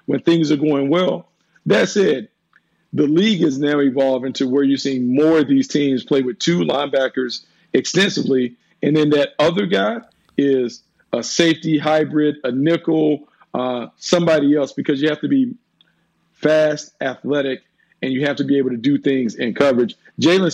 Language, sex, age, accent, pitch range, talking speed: English, male, 50-69, American, 130-155 Hz, 170 wpm